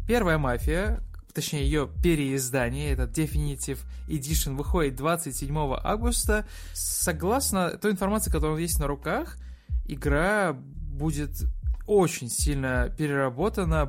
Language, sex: Russian, male